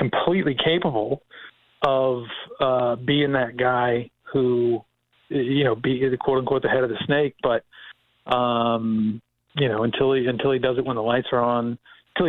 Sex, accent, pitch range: male, American, 120-145 Hz